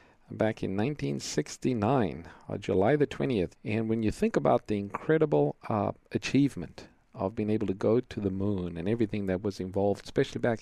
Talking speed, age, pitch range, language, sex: 175 wpm, 50-69, 100-130 Hz, English, male